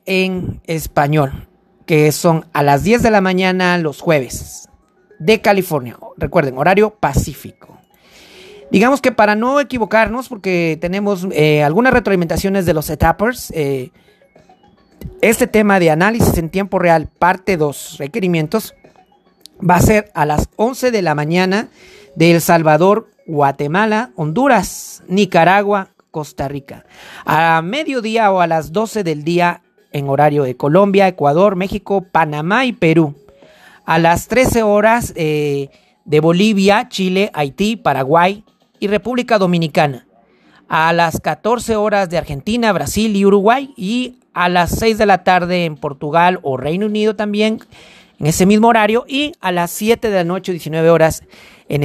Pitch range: 155-210 Hz